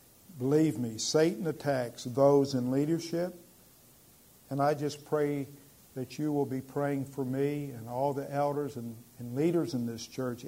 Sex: male